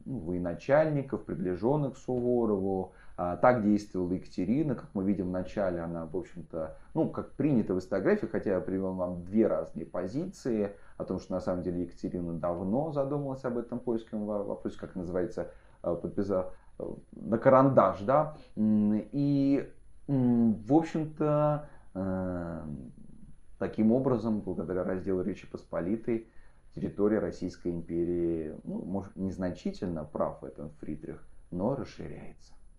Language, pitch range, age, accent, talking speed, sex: Russian, 90-125 Hz, 30-49, native, 125 wpm, male